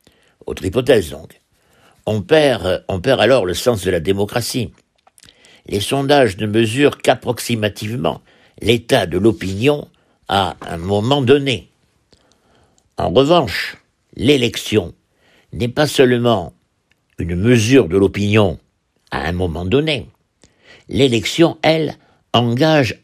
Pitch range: 95-135 Hz